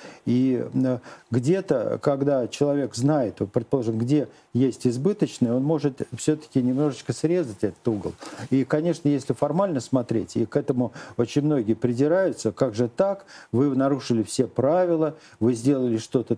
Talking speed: 135 wpm